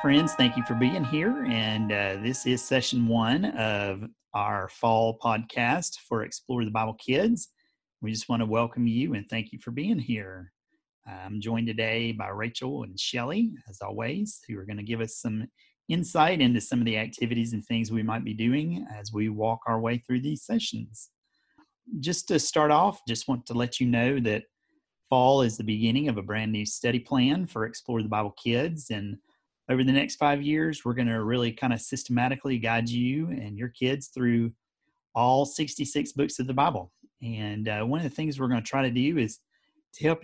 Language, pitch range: English, 110-135 Hz